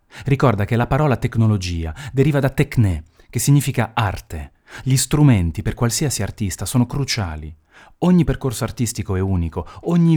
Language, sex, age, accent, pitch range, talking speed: Italian, male, 30-49, native, 85-120 Hz, 140 wpm